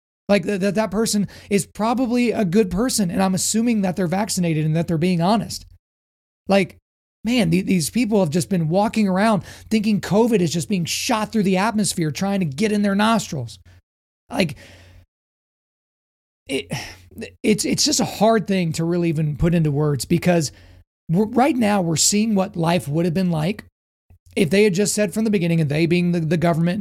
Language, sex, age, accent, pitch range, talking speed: English, male, 30-49, American, 150-215 Hz, 190 wpm